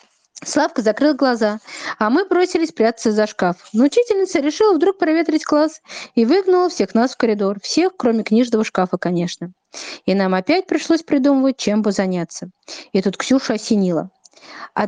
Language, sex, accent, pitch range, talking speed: Russian, female, native, 215-310 Hz, 155 wpm